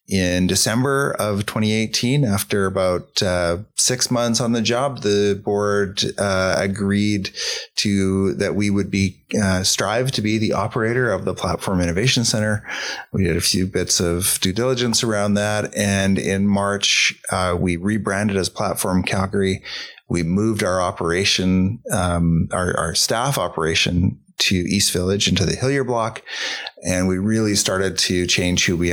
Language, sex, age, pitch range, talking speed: English, male, 30-49, 90-105 Hz, 155 wpm